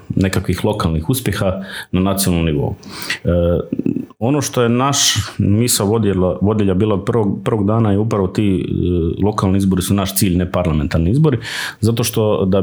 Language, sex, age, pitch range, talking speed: Croatian, male, 40-59, 90-115 Hz, 155 wpm